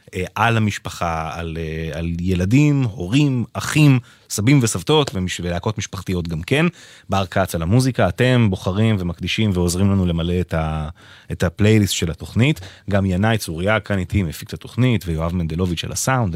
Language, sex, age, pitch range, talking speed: English, male, 30-49, 85-110 Hz, 145 wpm